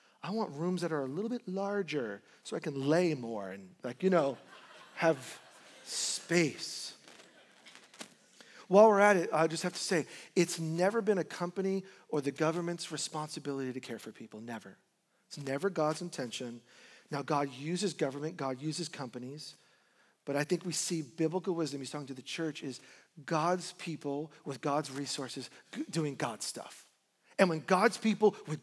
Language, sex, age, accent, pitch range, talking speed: English, male, 40-59, American, 150-185 Hz, 170 wpm